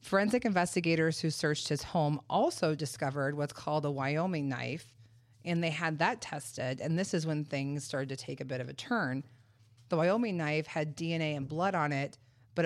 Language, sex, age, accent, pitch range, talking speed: English, female, 30-49, American, 130-165 Hz, 195 wpm